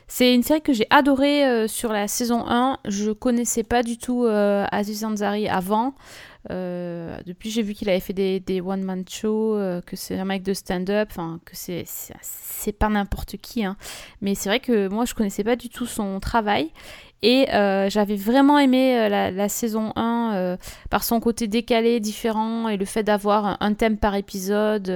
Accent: French